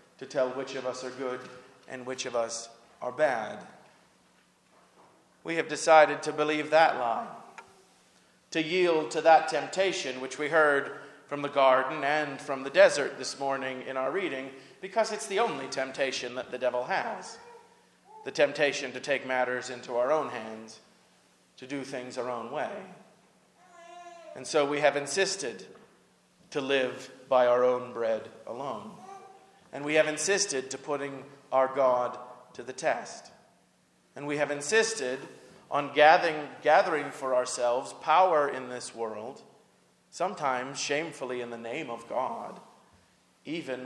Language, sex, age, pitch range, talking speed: English, male, 40-59, 125-155 Hz, 150 wpm